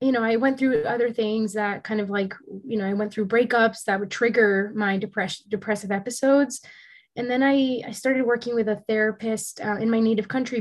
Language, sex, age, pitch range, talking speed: English, female, 20-39, 205-250 Hz, 215 wpm